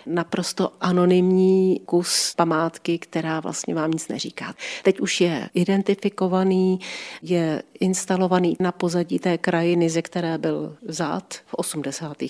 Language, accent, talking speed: Czech, native, 120 wpm